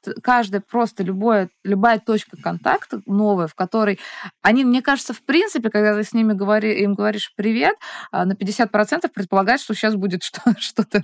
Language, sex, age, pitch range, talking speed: Russian, female, 20-39, 185-230 Hz, 160 wpm